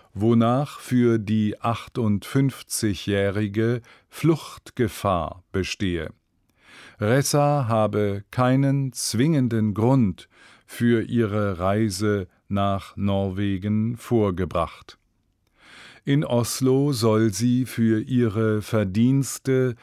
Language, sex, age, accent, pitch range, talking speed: German, male, 50-69, German, 100-125 Hz, 75 wpm